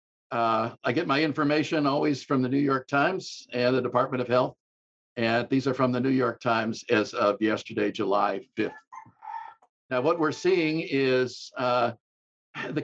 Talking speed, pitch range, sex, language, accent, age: 170 wpm, 120-150 Hz, male, English, American, 60-79